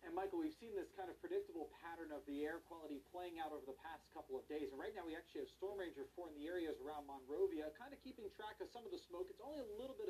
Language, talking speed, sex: English, 290 wpm, male